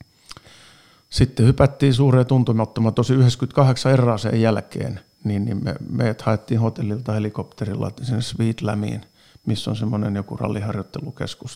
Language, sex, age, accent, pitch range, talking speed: Finnish, male, 50-69, native, 105-125 Hz, 105 wpm